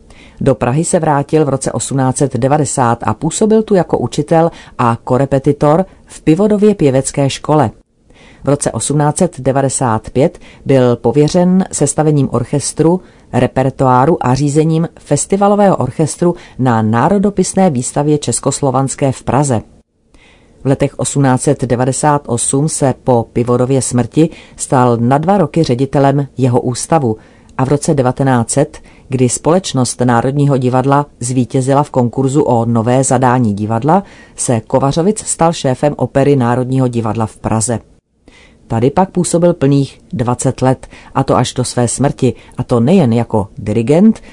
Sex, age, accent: female, 40-59, native